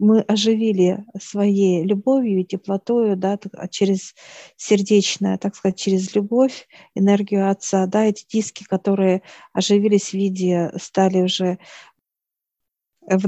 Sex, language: female, Russian